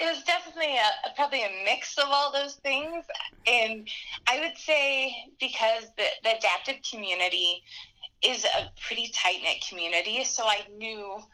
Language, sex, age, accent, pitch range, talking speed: English, female, 20-39, American, 175-255 Hz, 145 wpm